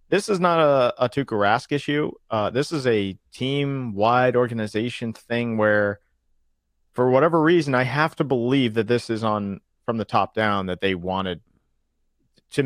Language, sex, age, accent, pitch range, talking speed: English, male, 40-59, American, 100-135 Hz, 165 wpm